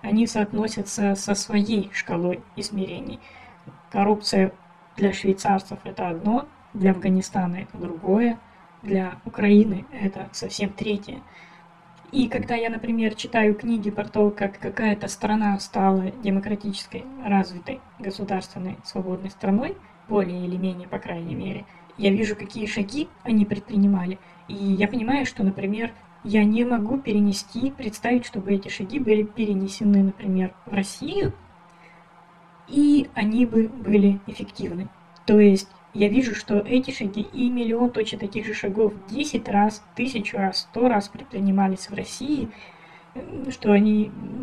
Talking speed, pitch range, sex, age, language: 130 wpm, 195-230 Hz, female, 20-39, Russian